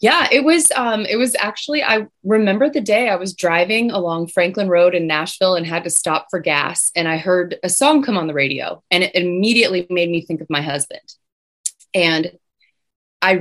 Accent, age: American, 20-39